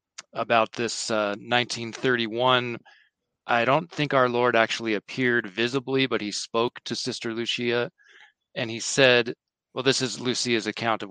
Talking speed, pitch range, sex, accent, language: 145 wpm, 105-125 Hz, male, American, English